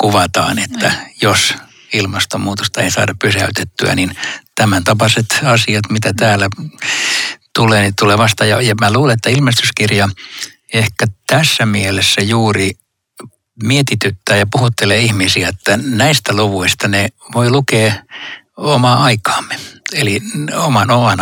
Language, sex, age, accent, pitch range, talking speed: Finnish, male, 60-79, native, 100-120 Hz, 115 wpm